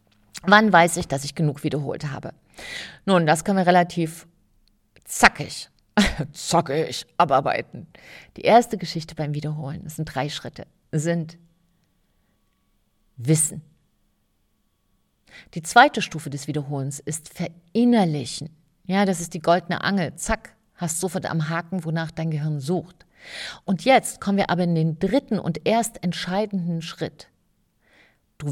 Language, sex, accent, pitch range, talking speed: German, female, German, 155-190 Hz, 130 wpm